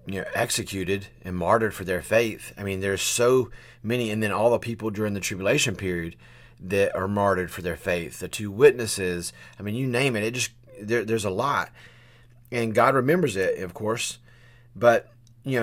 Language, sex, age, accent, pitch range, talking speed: English, male, 30-49, American, 100-120 Hz, 190 wpm